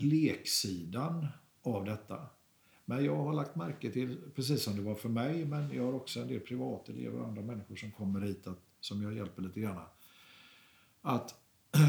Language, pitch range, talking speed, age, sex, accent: Swedish, 105-150 Hz, 175 wpm, 50-69, male, native